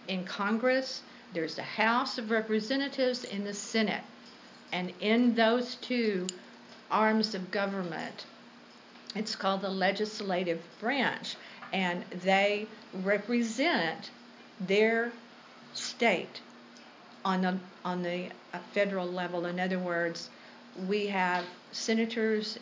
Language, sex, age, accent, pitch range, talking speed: English, female, 50-69, American, 180-220 Hz, 105 wpm